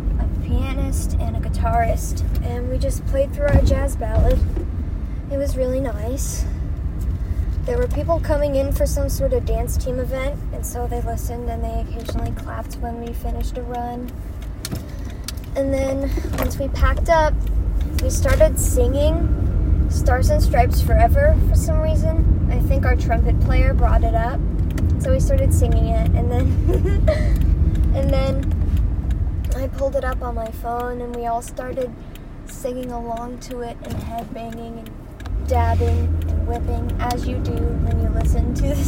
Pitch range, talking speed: 80-90 Hz, 160 wpm